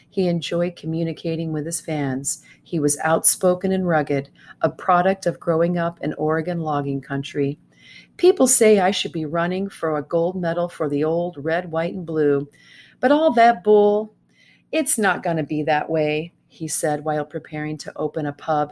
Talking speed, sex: 180 wpm, female